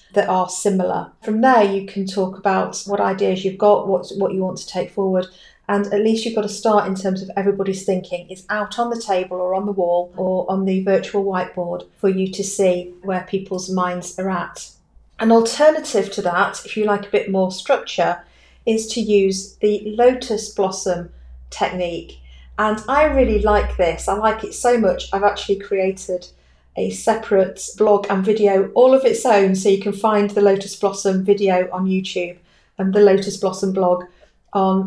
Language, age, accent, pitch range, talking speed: English, 40-59, British, 185-215 Hz, 190 wpm